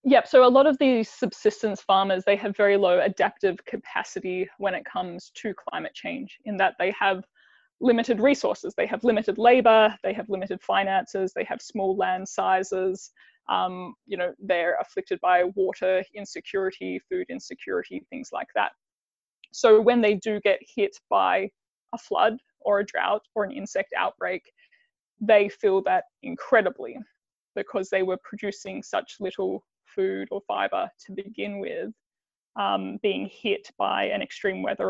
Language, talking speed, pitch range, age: English, 155 wpm, 195-270 Hz, 20-39